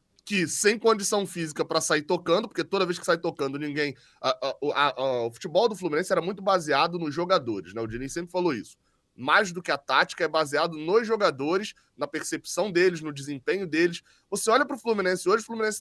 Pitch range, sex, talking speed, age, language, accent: 145-205 Hz, male, 215 wpm, 20-39, Portuguese, Brazilian